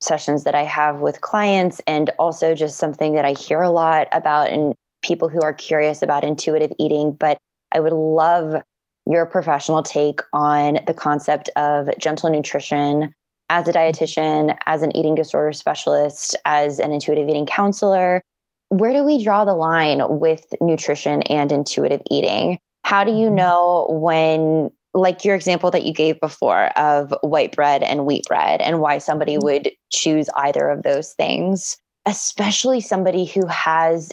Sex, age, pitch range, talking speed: female, 20-39, 150-175 Hz, 160 wpm